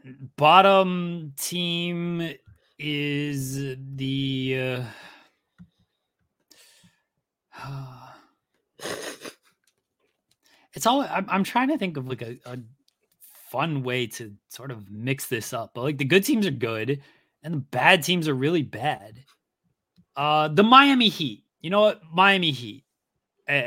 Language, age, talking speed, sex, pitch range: English, 30-49, 125 wpm, male, 120-150 Hz